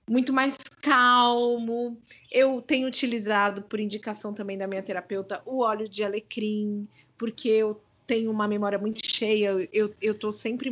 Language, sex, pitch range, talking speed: Portuguese, female, 195-240 Hz, 150 wpm